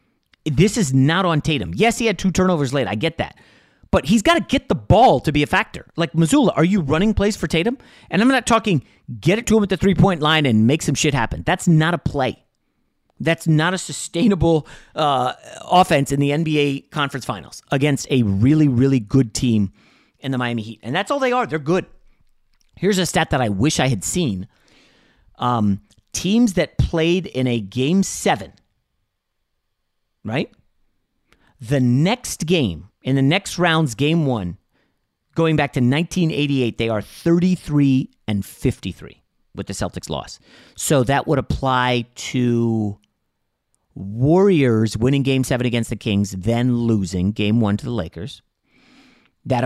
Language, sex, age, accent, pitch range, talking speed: English, male, 30-49, American, 120-170 Hz, 170 wpm